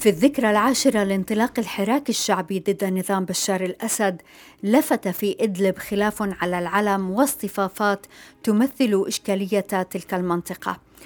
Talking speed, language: 115 wpm, Arabic